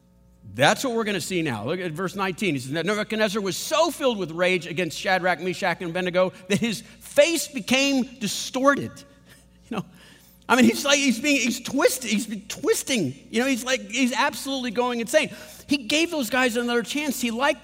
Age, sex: 50-69, male